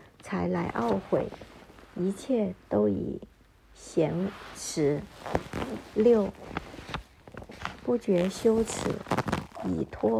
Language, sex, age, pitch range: Chinese, male, 60-79, 185-235 Hz